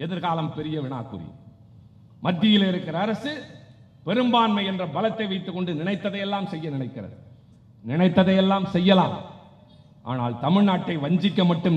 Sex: male